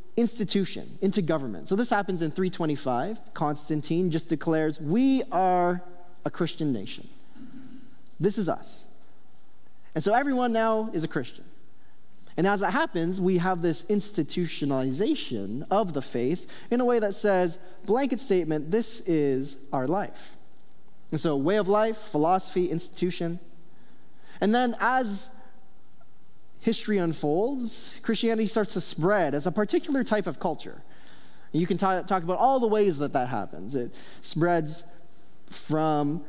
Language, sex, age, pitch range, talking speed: English, male, 20-39, 155-215 Hz, 135 wpm